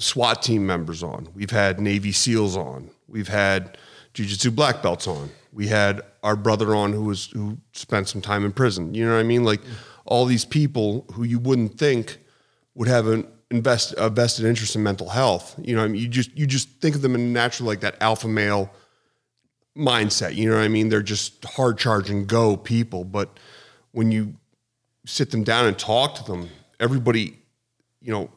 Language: English